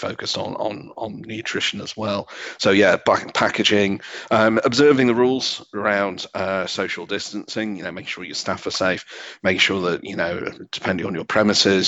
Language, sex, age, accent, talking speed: English, male, 40-59, British, 180 wpm